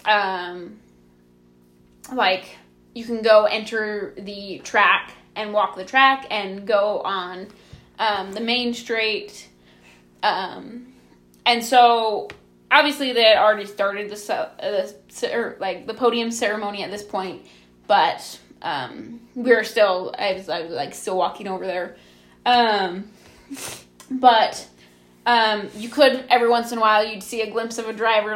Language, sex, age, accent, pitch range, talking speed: English, female, 20-39, American, 185-230 Hz, 145 wpm